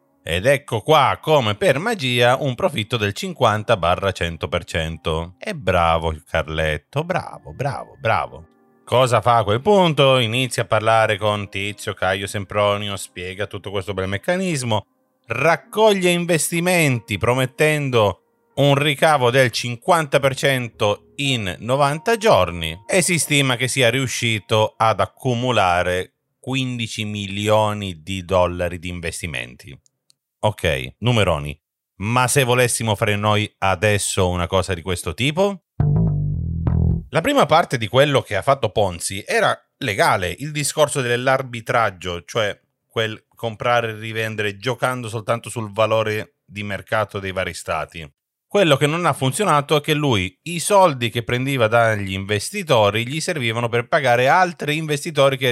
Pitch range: 100-140 Hz